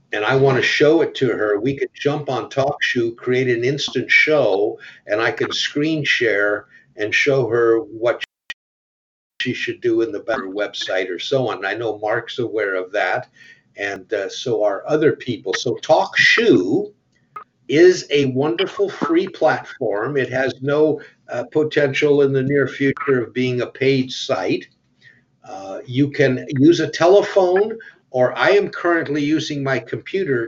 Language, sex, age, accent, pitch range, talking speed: English, male, 50-69, American, 120-155 Hz, 160 wpm